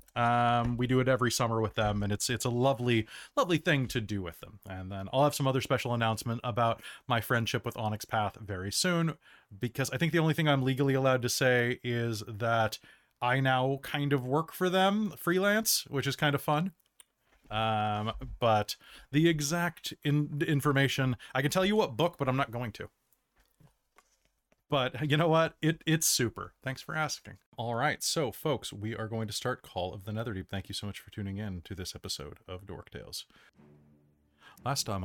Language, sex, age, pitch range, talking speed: English, male, 30-49, 100-145 Hz, 195 wpm